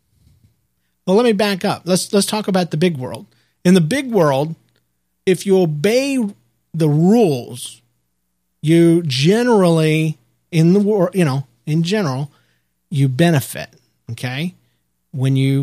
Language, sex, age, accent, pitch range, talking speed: English, male, 40-59, American, 130-180 Hz, 135 wpm